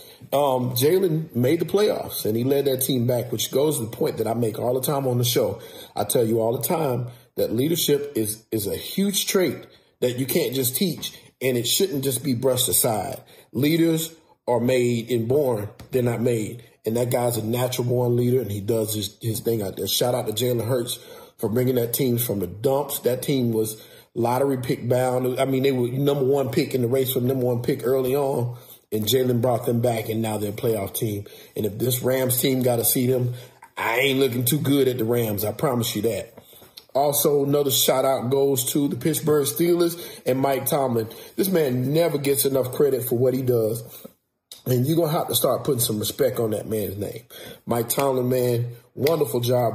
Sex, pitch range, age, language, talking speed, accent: male, 115-135 Hz, 40-59, English, 215 wpm, American